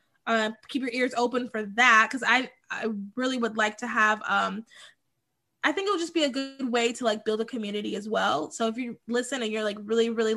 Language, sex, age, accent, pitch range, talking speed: English, female, 10-29, American, 210-245 Hz, 235 wpm